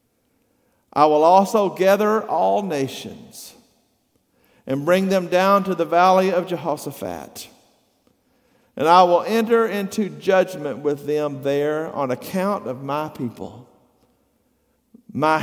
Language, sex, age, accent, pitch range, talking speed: English, male, 50-69, American, 120-190 Hz, 115 wpm